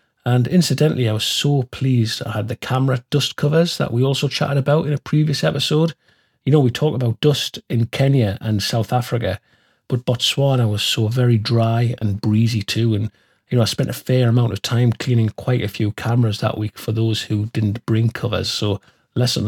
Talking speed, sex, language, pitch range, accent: 205 wpm, male, English, 110-130 Hz, British